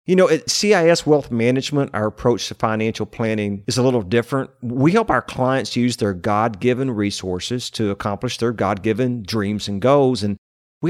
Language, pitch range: English, 110-140 Hz